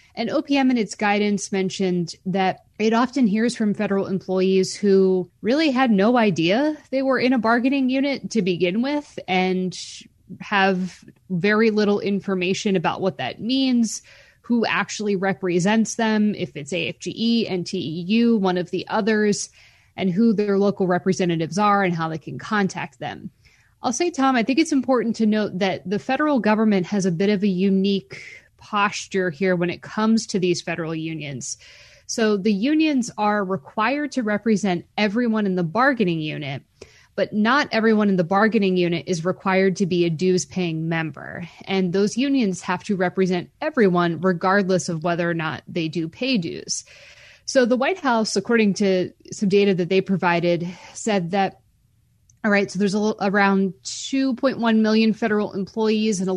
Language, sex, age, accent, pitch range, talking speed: English, female, 20-39, American, 180-220 Hz, 165 wpm